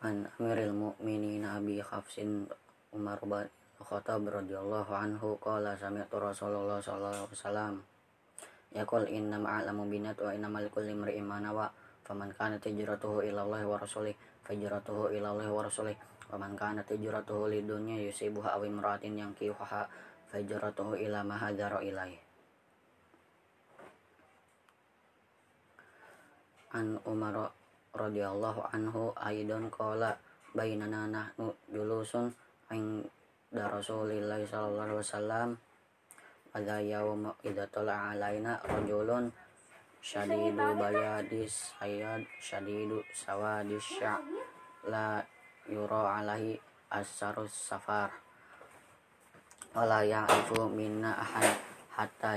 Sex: female